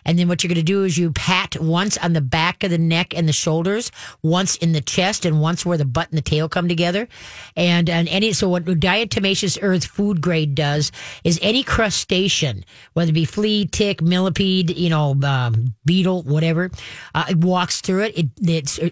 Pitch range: 150-185 Hz